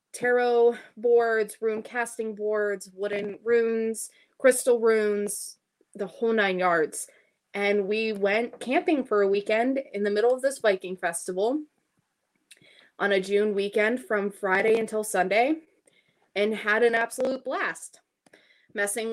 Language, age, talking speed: English, 20-39, 130 wpm